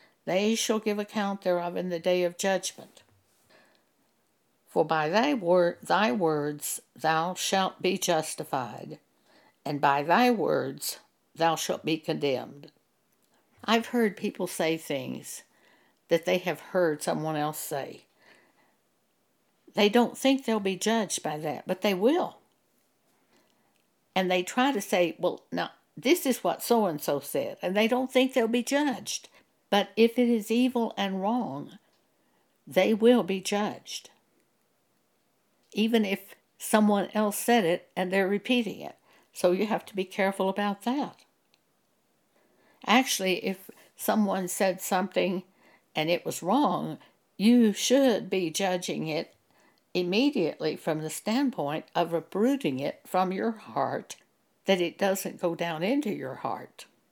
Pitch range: 175-230 Hz